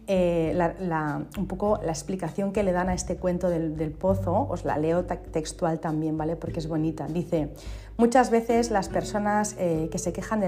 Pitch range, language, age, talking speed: 165-200 Hz, Spanish, 40-59, 200 wpm